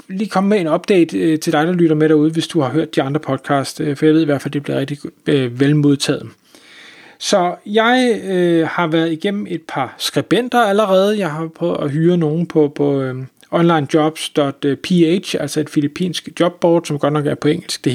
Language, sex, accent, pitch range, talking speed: Danish, male, native, 150-180 Hz, 195 wpm